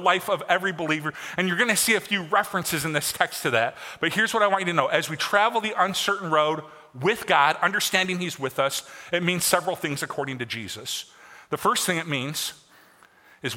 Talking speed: 220 wpm